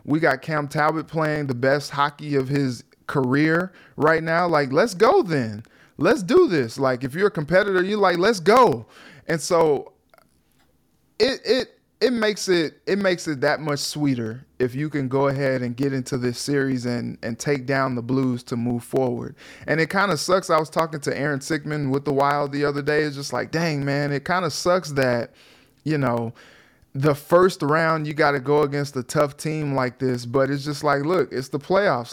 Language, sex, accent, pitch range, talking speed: English, male, American, 135-160 Hz, 210 wpm